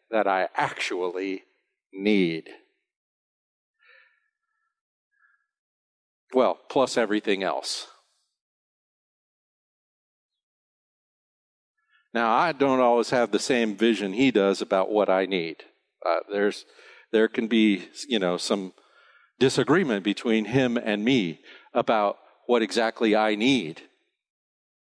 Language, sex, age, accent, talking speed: English, male, 50-69, American, 95 wpm